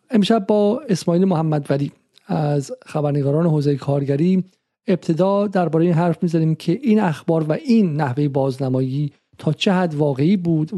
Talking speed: 145 wpm